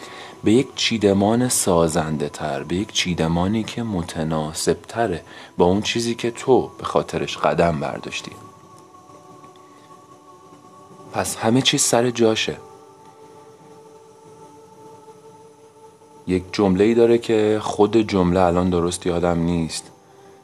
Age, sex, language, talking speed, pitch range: 30-49, male, Persian, 105 wpm, 85-120 Hz